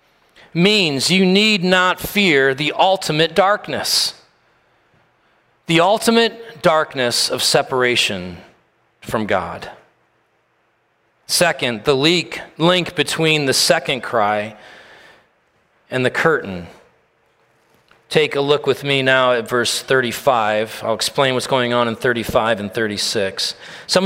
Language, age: English, 40-59